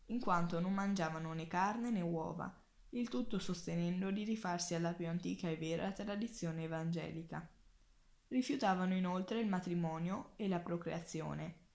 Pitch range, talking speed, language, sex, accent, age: 165-195 Hz, 140 wpm, Italian, female, native, 10-29